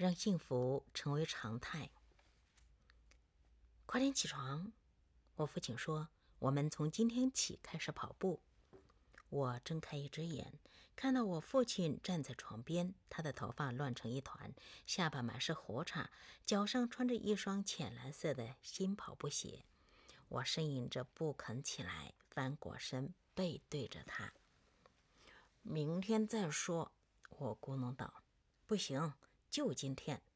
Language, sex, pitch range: Chinese, female, 130-195 Hz